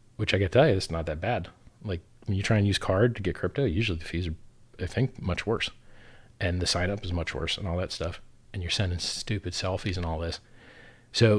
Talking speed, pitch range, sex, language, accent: 250 wpm, 95-115 Hz, male, English, American